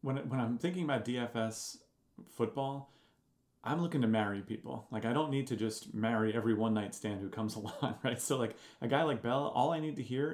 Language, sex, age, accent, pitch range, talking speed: English, male, 30-49, American, 100-120 Hz, 215 wpm